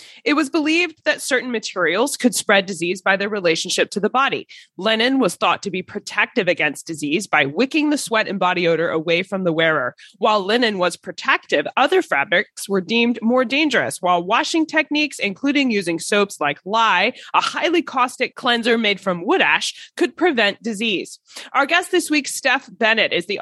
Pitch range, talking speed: 180-260 Hz, 180 wpm